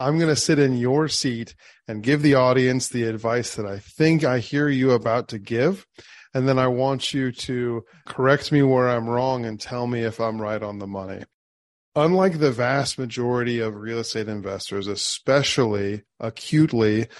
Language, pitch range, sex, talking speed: English, 110-130 Hz, male, 180 wpm